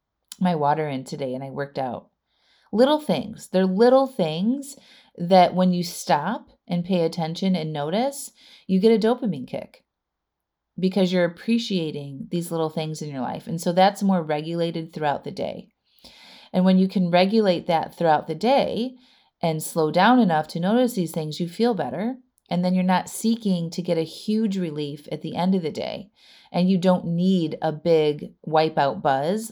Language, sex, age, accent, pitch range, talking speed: English, female, 30-49, American, 155-205 Hz, 180 wpm